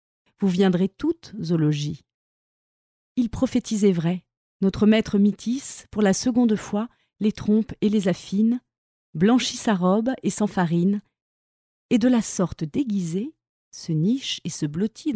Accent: French